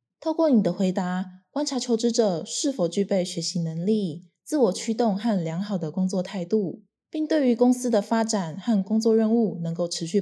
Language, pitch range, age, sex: Chinese, 180-235 Hz, 20-39, female